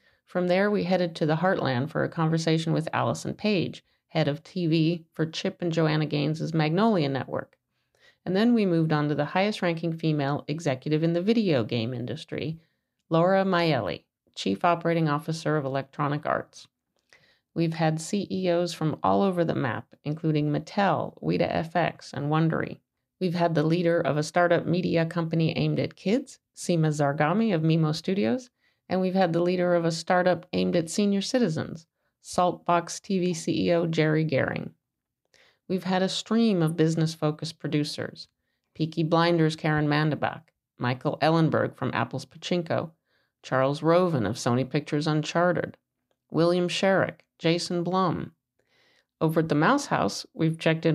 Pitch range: 155-180 Hz